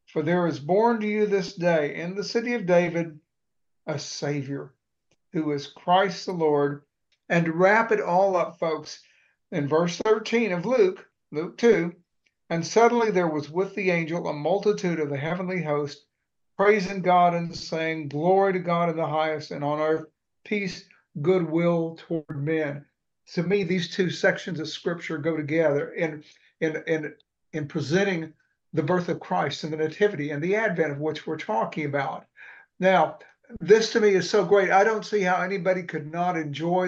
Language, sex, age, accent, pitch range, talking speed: English, male, 60-79, American, 160-200 Hz, 175 wpm